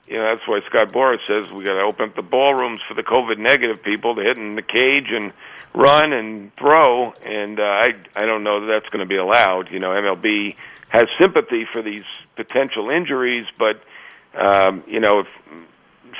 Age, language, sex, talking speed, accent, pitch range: 50-69, English, male, 200 wpm, American, 105-140 Hz